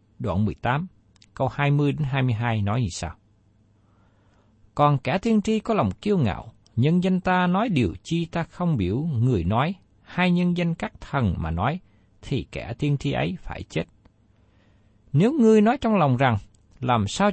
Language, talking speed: Vietnamese, 165 wpm